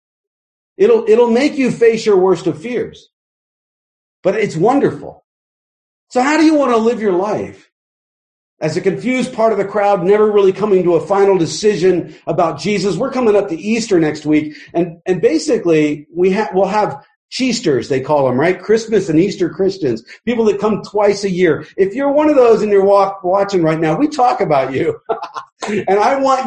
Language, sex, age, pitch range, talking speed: English, male, 50-69, 170-250 Hz, 190 wpm